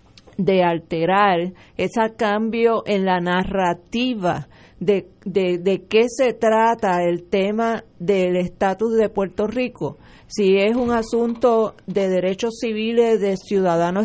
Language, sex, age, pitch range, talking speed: Spanish, female, 40-59, 180-225 Hz, 125 wpm